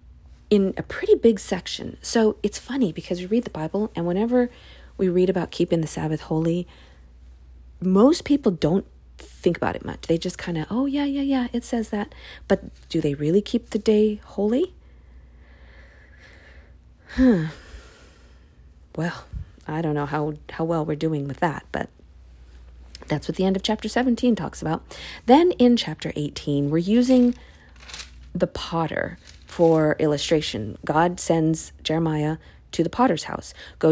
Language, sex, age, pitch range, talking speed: English, female, 40-59, 150-215 Hz, 150 wpm